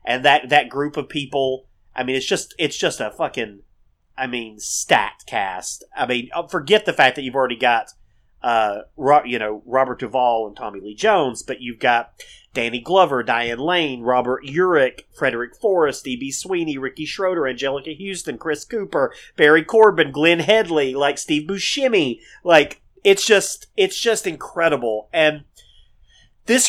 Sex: male